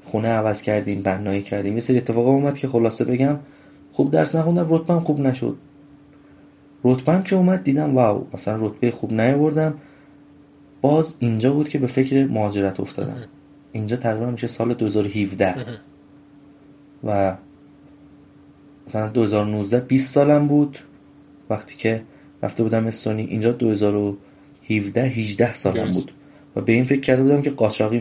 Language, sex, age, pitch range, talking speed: Persian, male, 20-39, 105-145 Hz, 135 wpm